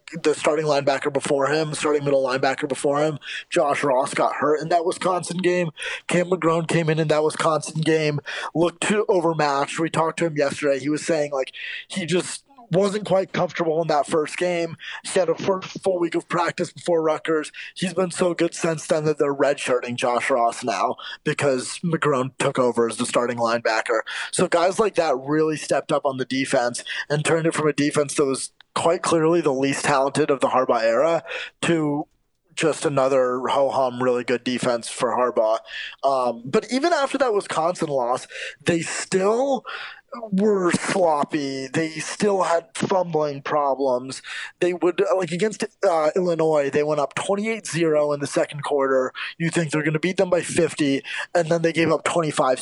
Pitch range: 140-175 Hz